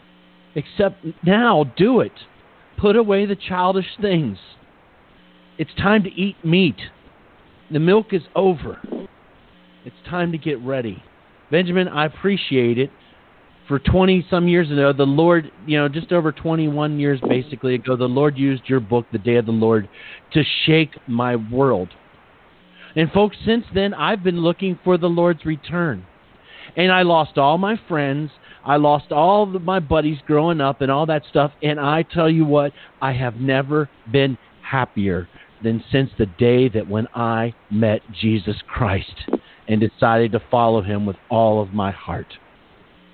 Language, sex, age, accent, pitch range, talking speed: English, male, 40-59, American, 120-170 Hz, 160 wpm